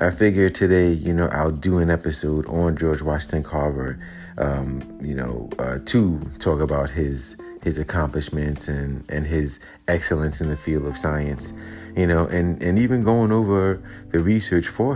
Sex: male